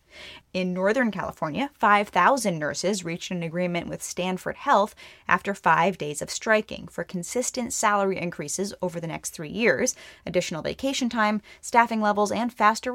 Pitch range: 175-215 Hz